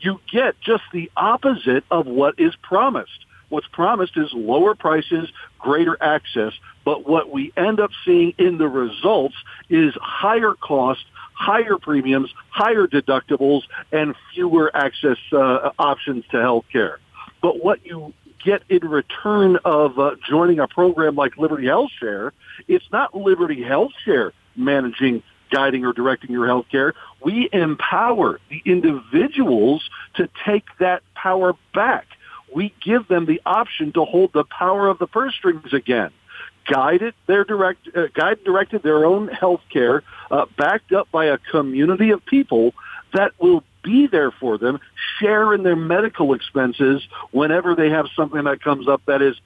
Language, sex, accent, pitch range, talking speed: English, male, American, 140-205 Hz, 155 wpm